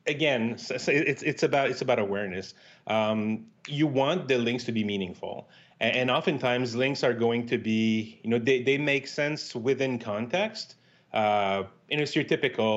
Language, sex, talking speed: English, male, 165 wpm